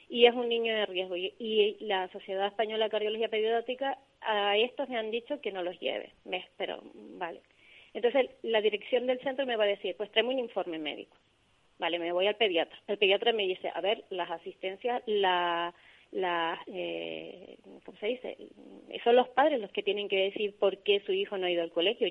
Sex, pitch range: female, 185-220 Hz